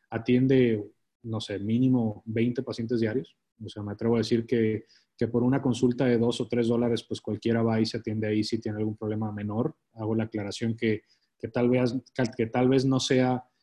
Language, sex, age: English, male, 30-49